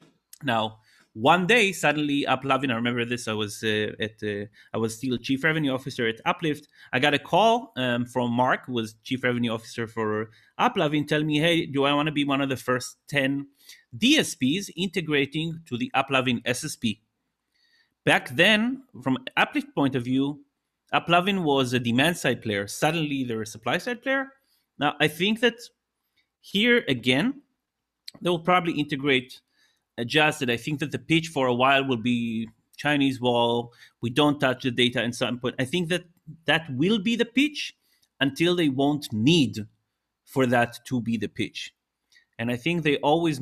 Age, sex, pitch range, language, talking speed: 30-49, male, 125-170 Hz, English, 175 wpm